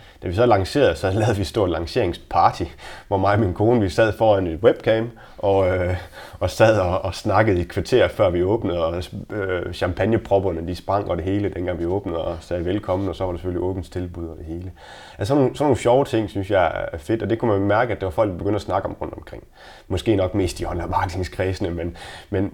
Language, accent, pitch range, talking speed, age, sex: Danish, native, 90-105 Hz, 240 wpm, 30-49, male